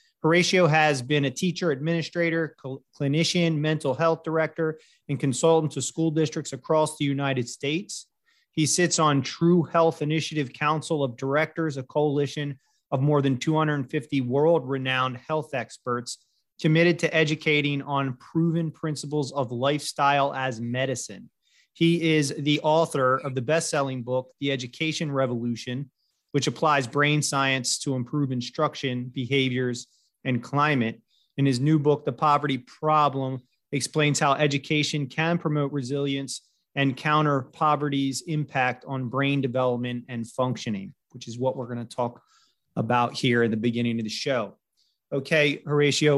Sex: male